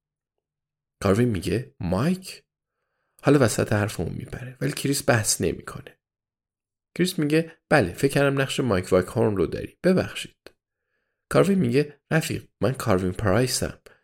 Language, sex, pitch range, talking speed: Persian, male, 90-125 Hz, 125 wpm